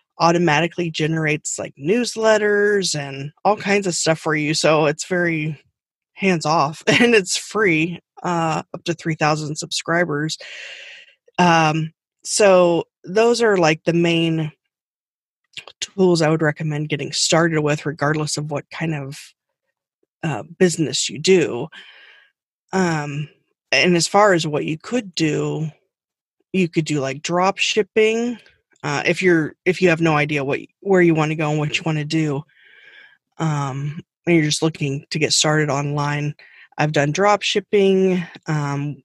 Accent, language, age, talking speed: American, English, 20-39, 150 wpm